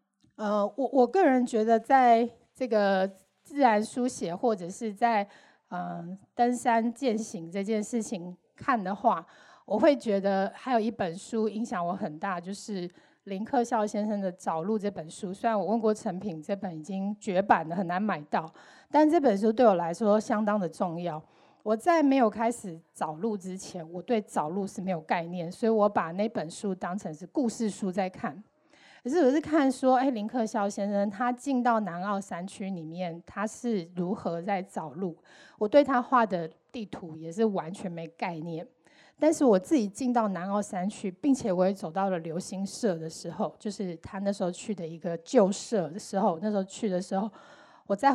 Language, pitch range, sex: Chinese, 185-235 Hz, female